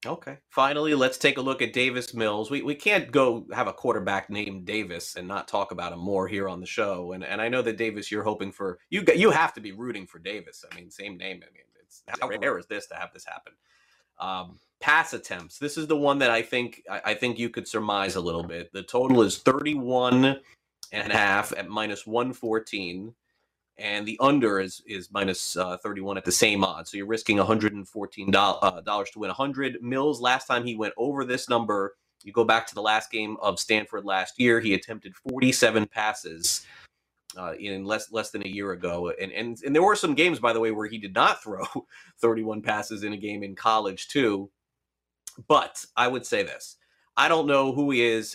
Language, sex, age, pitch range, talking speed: English, male, 30-49, 100-120 Hz, 215 wpm